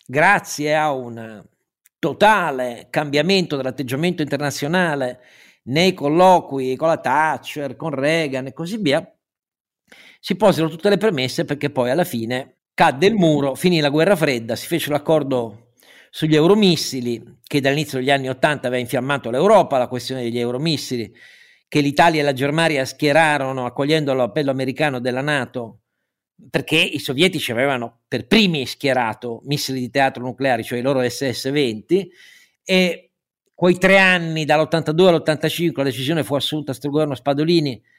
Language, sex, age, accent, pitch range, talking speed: Italian, male, 50-69, native, 130-165 Hz, 140 wpm